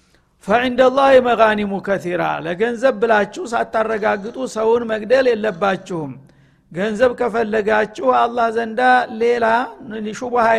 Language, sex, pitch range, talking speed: Amharic, male, 205-240 Hz, 90 wpm